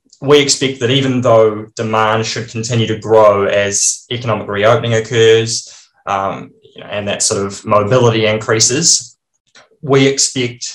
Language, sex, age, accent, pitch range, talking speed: English, male, 20-39, Australian, 100-115 Hz, 130 wpm